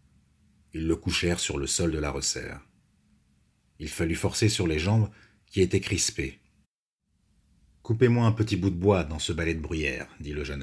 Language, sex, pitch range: French, male, 80-105 Hz